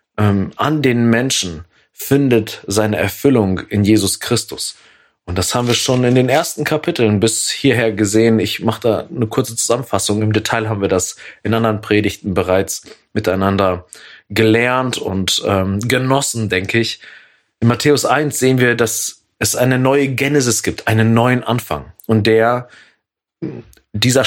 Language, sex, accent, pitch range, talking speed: German, male, German, 105-130 Hz, 150 wpm